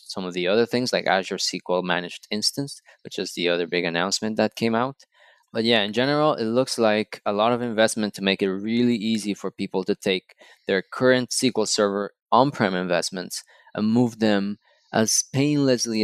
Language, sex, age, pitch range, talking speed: English, male, 20-39, 95-120 Hz, 185 wpm